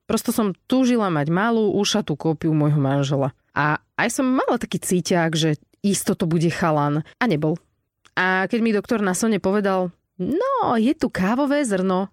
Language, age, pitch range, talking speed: Slovak, 20-39, 160-195 Hz, 170 wpm